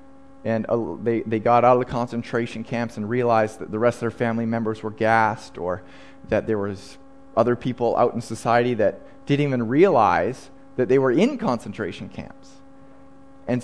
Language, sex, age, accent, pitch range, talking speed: English, male, 30-49, American, 115-145 Hz, 175 wpm